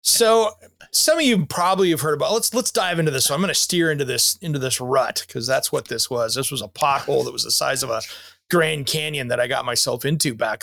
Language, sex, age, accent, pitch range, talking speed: English, male, 30-49, American, 140-205 Hz, 260 wpm